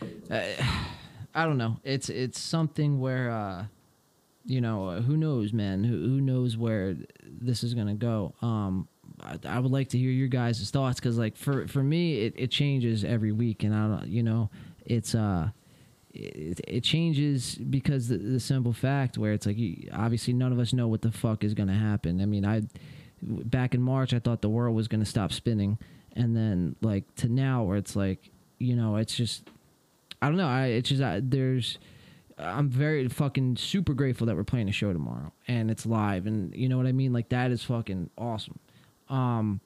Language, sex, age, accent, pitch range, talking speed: English, male, 20-39, American, 110-130 Hz, 205 wpm